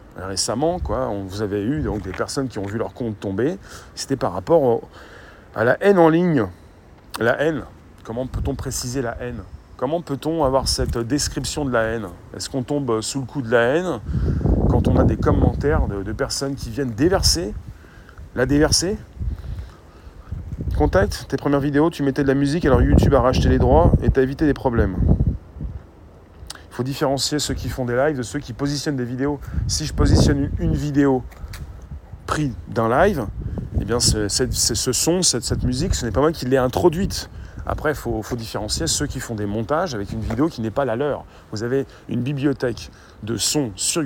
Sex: male